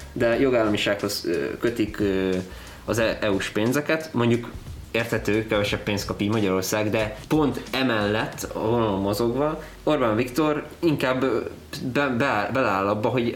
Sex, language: male, Hungarian